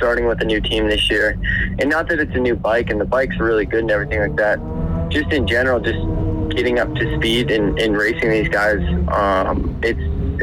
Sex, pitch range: male, 85-120 Hz